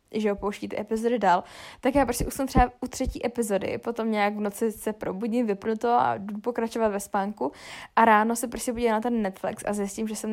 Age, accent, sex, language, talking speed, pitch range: 10-29, native, female, Czech, 225 wpm, 205-230 Hz